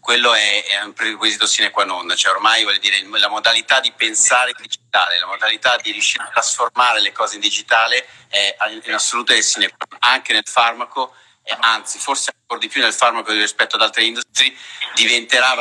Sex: male